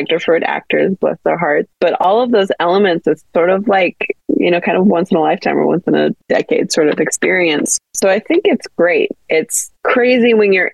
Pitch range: 150-195 Hz